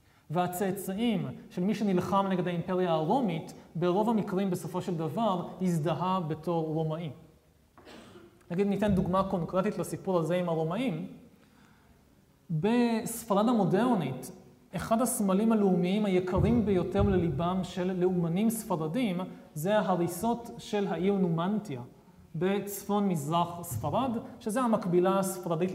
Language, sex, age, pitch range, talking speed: Hebrew, male, 30-49, 175-215 Hz, 105 wpm